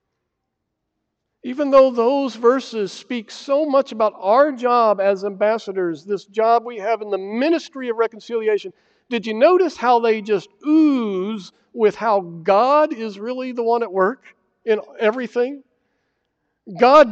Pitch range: 205-265 Hz